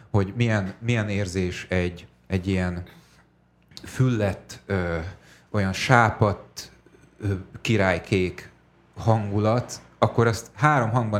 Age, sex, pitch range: 30-49, male, 95-120 Hz